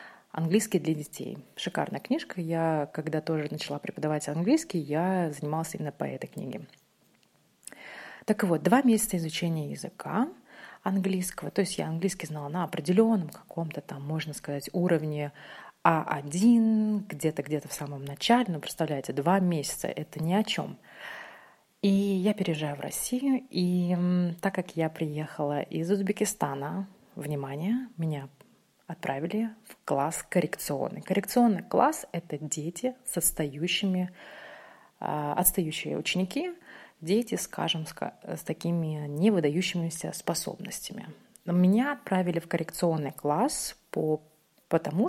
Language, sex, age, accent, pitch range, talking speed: Russian, female, 30-49, native, 155-195 Hz, 120 wpm